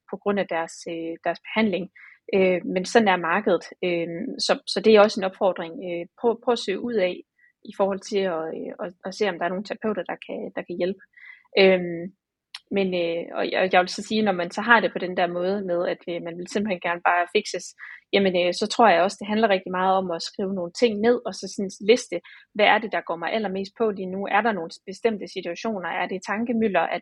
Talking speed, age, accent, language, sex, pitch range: 220 wpm, 30-49, native, Danish, female, 180-215 Hz